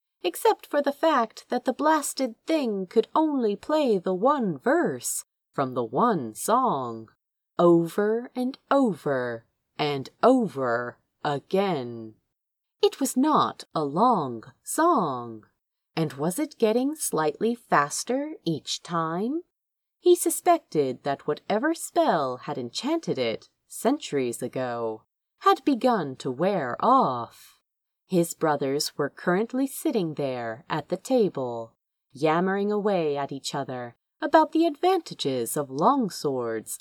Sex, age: female, 30-49